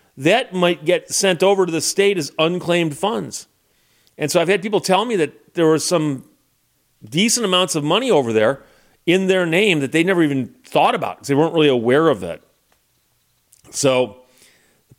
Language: English